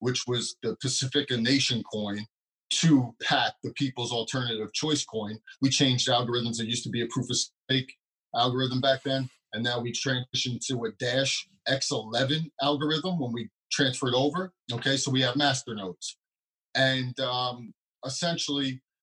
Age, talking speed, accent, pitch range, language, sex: 30-49, 160 wpm, American, 125-140 Hz, English, male